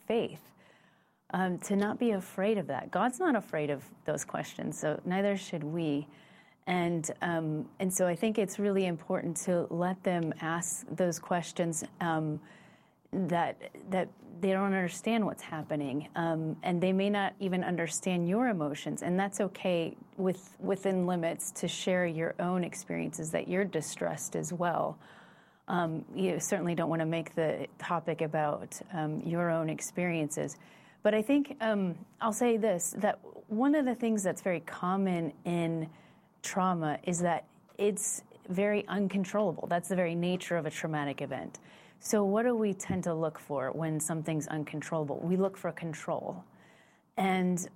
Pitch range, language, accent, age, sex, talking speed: 165-200 Hz, English, American, 30-49, female, 160 wpm